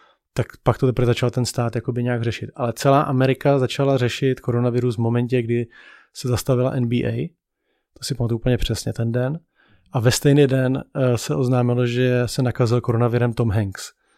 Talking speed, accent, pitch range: 170 wpm, native, 120-130 Hz